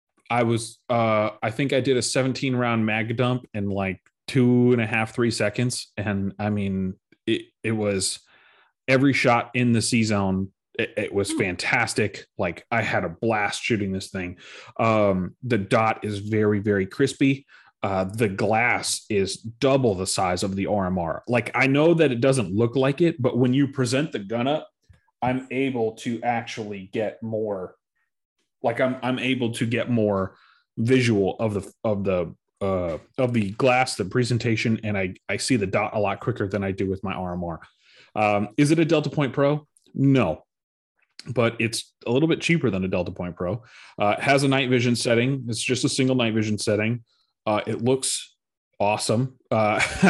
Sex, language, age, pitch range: male, English, 30-49, 105-130 Hz